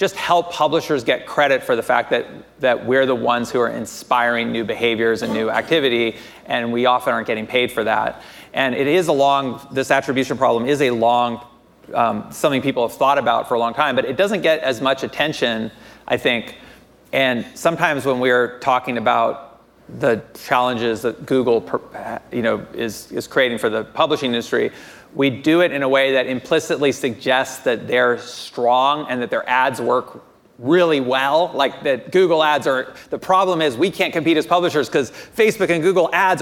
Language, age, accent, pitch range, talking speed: English, 30-49, American, 125-170 Hz, 190 wpm